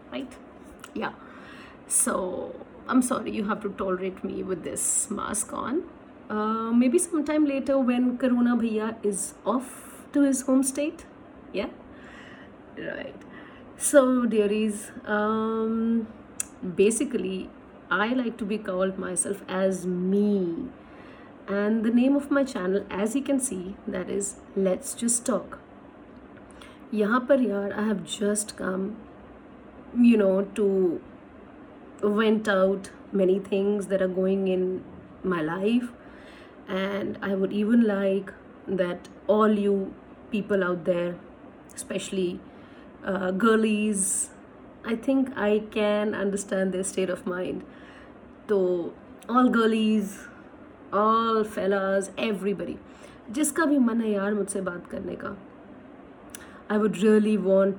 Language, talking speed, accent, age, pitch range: Hindi, 125 wpm, native, 30-49, 195-265 Hz